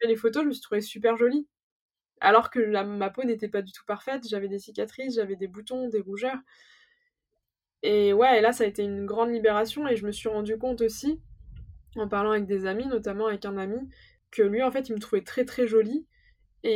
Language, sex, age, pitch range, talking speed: French, female, 20-39, 215-270 Hz, 230 wpm